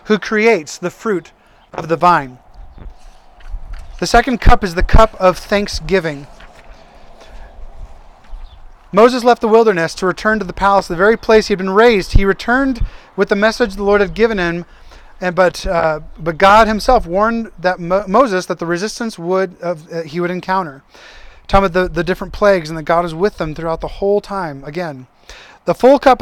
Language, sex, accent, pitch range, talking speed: English, male, American, 170-215 Hz, 180 wpm